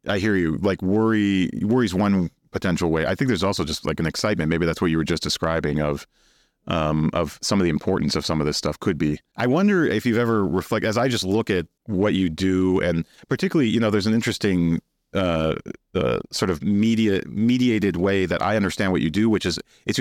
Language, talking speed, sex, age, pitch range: English, 225 wpm, male, 30-49, 85-110 Hz